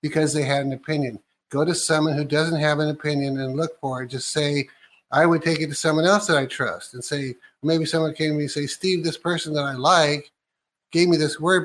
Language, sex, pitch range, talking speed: English, male, 135-165 Hz, 245 wpm